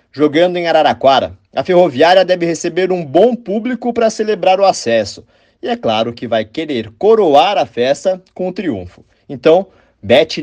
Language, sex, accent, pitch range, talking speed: Portuguese, male, Brazilian, 125-185 Hz, 160 wpm